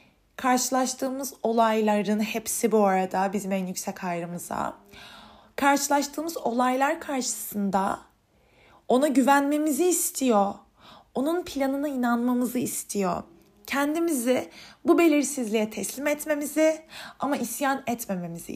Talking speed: 85 wpm